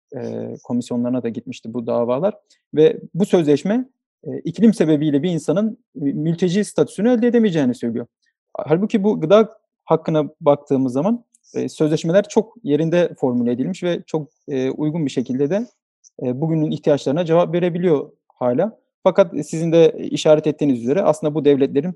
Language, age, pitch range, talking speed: English, 40-59, 135-180 Hz, 130 wpm